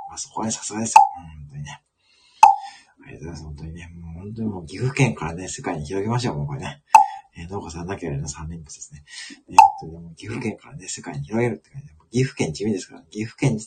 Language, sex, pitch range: Japanese, male, 85-135 Hz